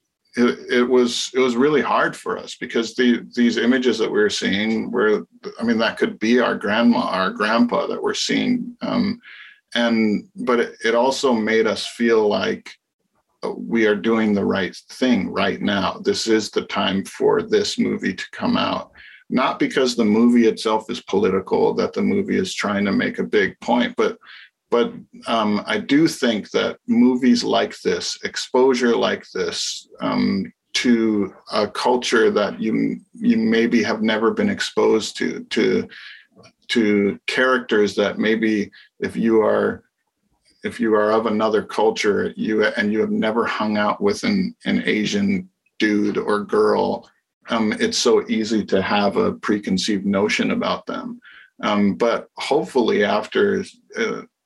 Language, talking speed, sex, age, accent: English, 160 wpm, male, 40-59, American